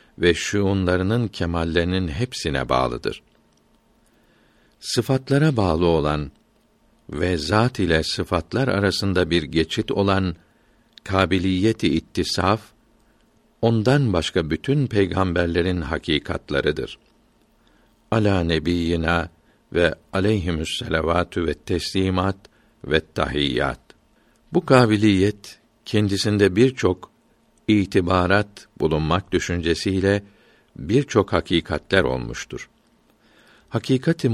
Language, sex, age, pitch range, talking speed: Turkish, male, 60-79, 85-105 Hz, 75 wpm